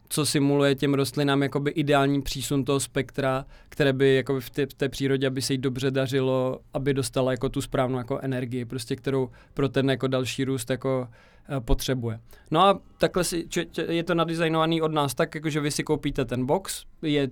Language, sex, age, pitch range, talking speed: Czech, male, 20-39, 135-150 Hz, 195 wpm